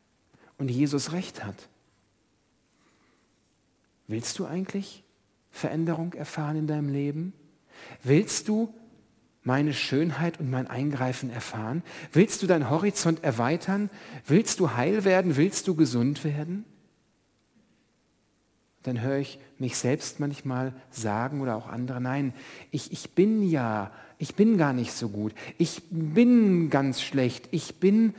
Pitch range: 120-165 Hz